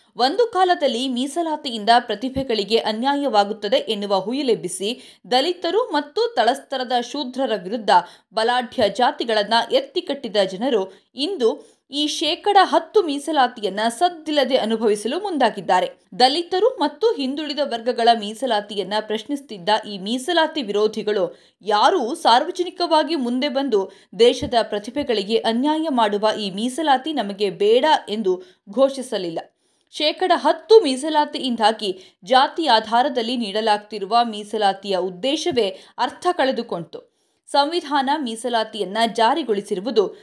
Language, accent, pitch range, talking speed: Kannada, native, 215-300 Hz, 90 wpm